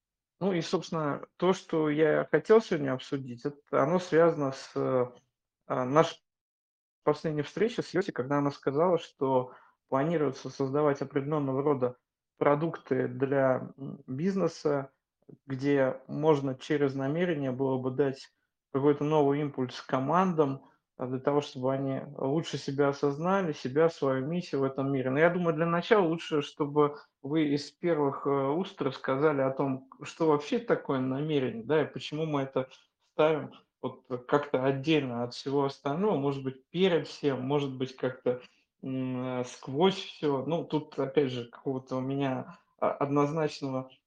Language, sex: Russian, male